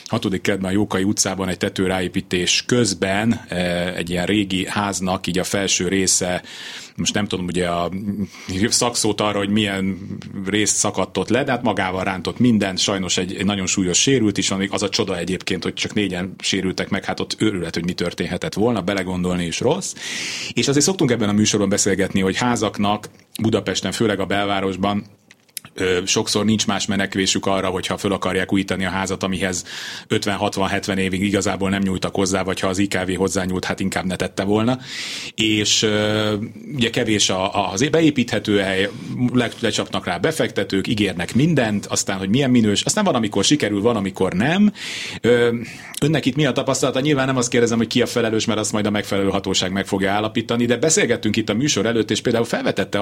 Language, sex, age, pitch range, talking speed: Hungarian, male, 30-49, 95-110 Hz, 175 wpm